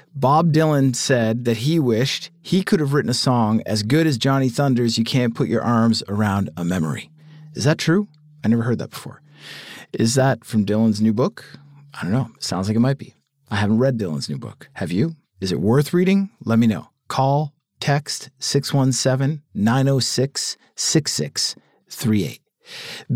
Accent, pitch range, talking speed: American, 115-155 Hz, 170 wpm